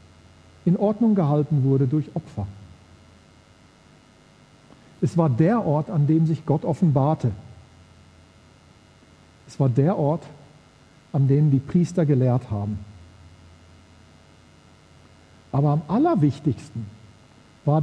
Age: 50-69